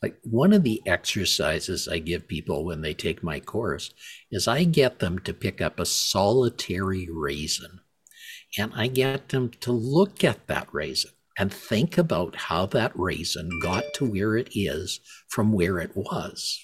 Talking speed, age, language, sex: 170 wpm, 60-79, English, male